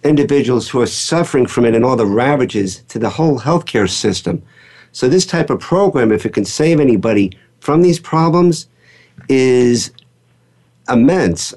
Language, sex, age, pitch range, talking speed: English, male, 50-69, 115-145 Hz, 155 wpm